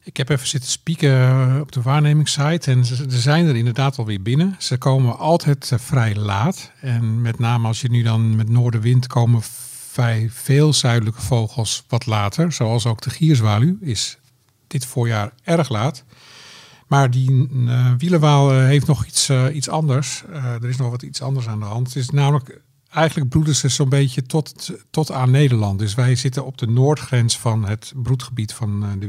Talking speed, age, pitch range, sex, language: 185 wpm, 50-69, 115-140 Hz, male, Dutch